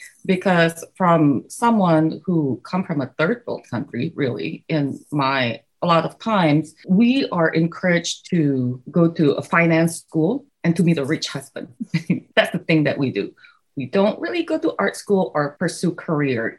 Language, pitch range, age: German, 150-210 Hz, 30-49